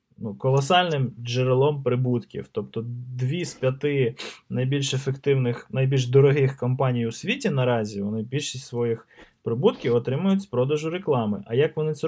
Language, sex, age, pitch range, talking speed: Ukrainian, male, 20-39, 120-150 Hz, 135 wpm